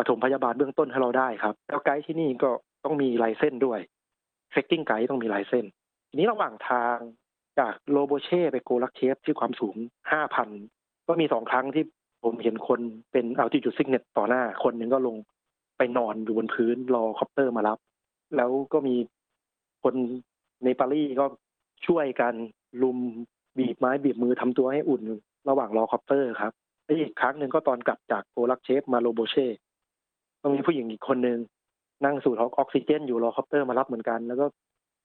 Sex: male